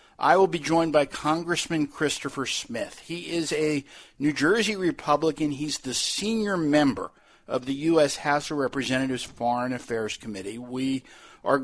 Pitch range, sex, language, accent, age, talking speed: 120-150 Hz, male, English, American, 50-69, 150 wpm